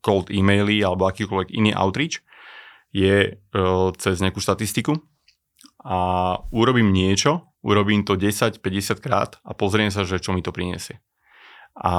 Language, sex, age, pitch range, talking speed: Slovak, male, 30-49, 95-105 Hz, 135 wpm